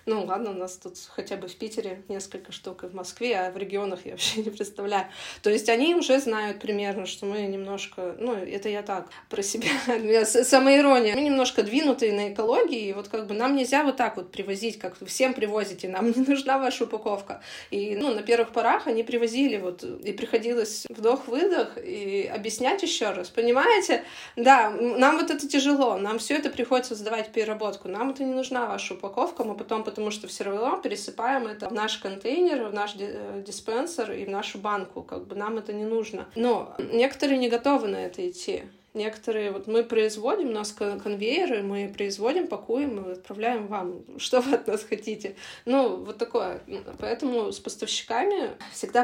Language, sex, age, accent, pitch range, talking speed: Russian, female, 20-39, native, 200-255 Hz, 180 wpm